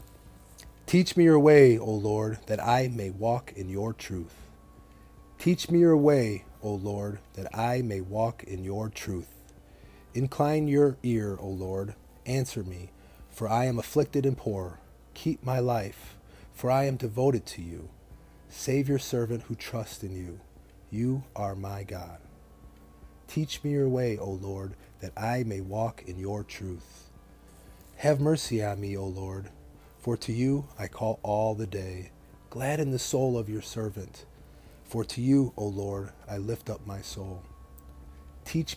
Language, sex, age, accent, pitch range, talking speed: English, male, 30-49, American, 95-120 Hz, 160 wpm